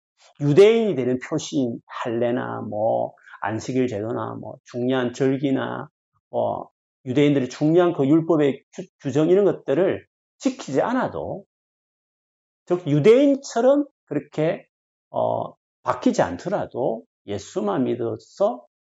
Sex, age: male, 40-59